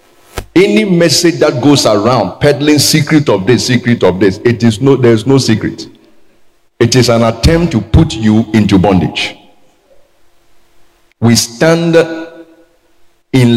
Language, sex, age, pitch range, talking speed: English, male, 50-69, 110-145 Hz, 135 wpm